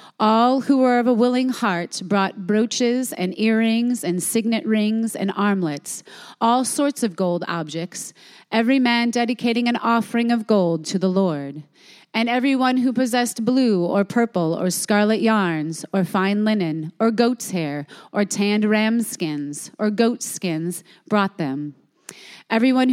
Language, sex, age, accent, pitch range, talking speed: English, female, 30-49, American, 185-245 Hz, 150 wpm